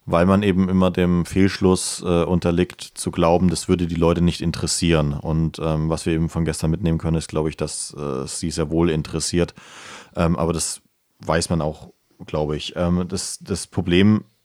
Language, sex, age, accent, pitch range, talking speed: German, male, 30-49, German, 85-95 Hz, 190 wpm